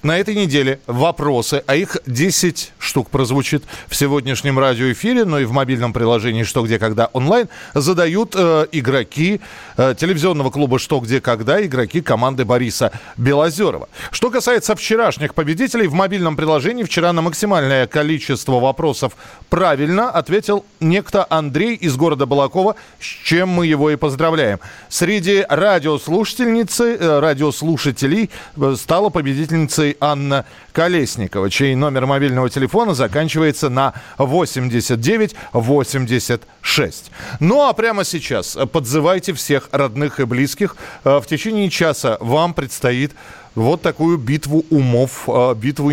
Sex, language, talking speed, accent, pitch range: male, Russian, 125 wpm, native, 135-185 Hz